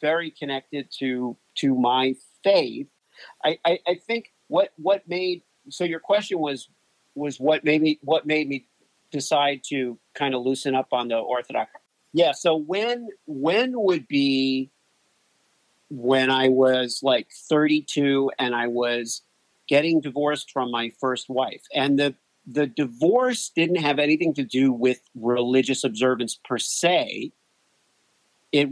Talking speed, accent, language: 140 wpm, American, English